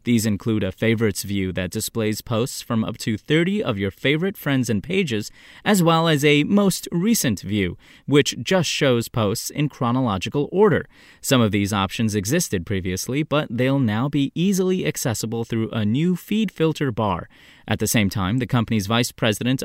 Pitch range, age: 110-150 Hz, 30-49